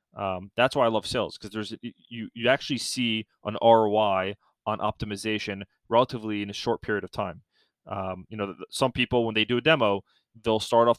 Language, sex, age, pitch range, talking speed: English, male, 20-39, 105-120 Hz, 195 wpm